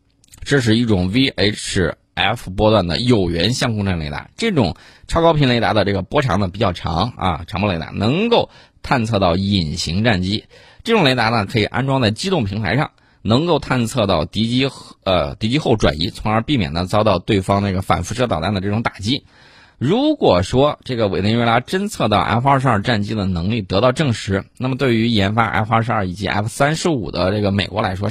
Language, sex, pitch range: Chinese, male, 95-125 Hz